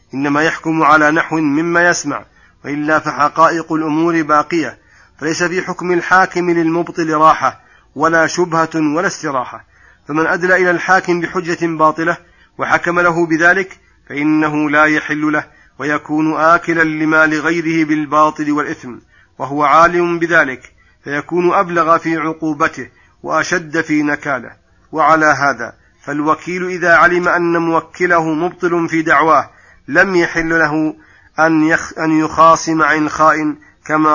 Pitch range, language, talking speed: 145-165 Hz, Arabic, 120 wpm